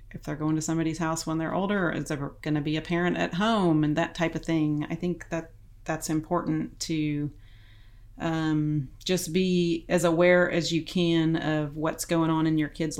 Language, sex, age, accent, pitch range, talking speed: English, female, 30-49, American, 145-165 Hz, 205 wpm